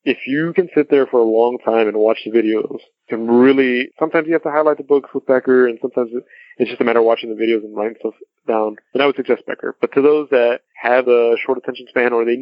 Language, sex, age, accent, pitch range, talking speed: English, male, 20-39, American, 115-140 Hz, 260 wpm